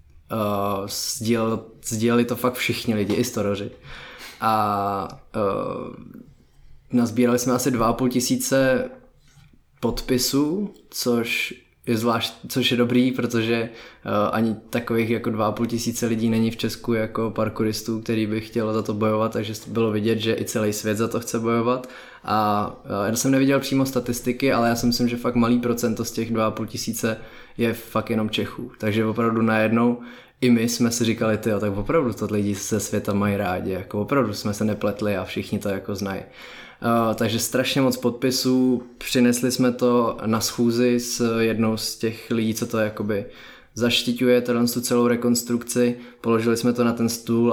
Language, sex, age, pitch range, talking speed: Czech, male, 20-39, 110-120 Hz, 165 wpm